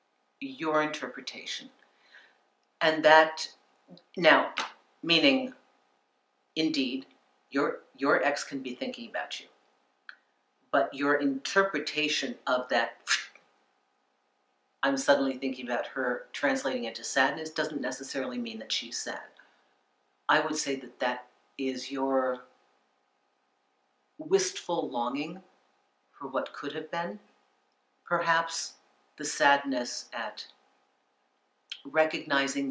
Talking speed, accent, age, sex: 95 wpm, American, 50-69, female